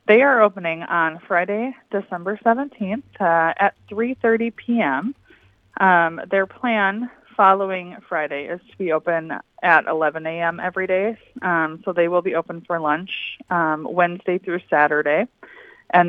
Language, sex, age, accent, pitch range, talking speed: English, female, 20-39, American, 165-210 Hz, 140 wpm